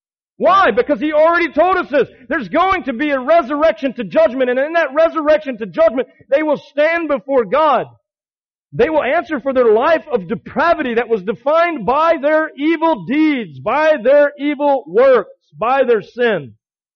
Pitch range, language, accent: 195-290 Hz, English, American